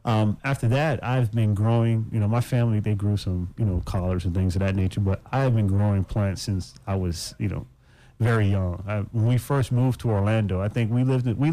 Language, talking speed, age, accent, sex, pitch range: English, 225 wpm, 30-49, American, male, 95-125 Hz